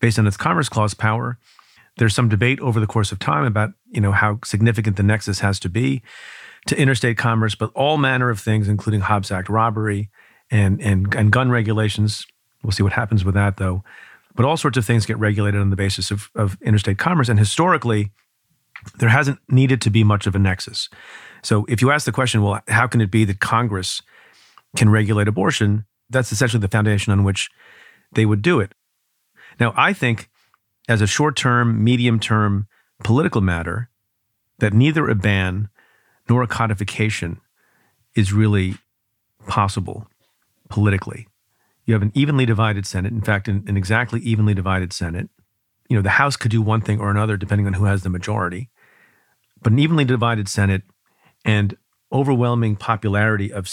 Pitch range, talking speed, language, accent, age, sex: 100-120 Hz, 175 wpm, English, American, 40-59, male